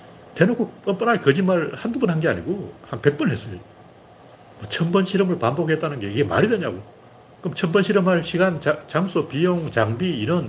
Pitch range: 115-175 Hz